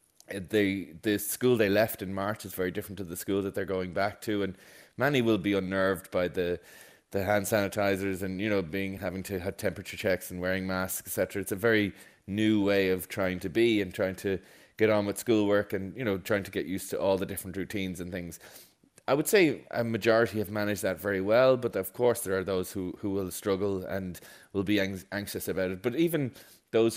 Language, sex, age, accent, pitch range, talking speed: English, male, 20-39, Irish, 95-105 Hz, 225 wpm